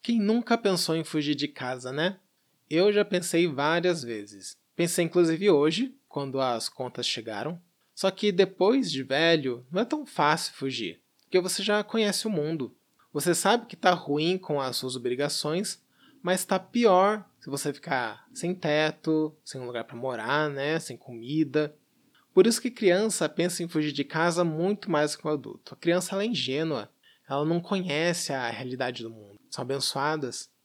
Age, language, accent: 20-39, Portuguese, Brazilian